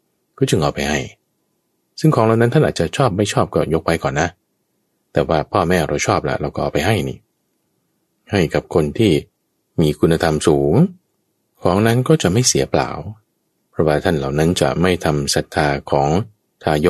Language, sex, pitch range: Thai, male, 75-110 Hz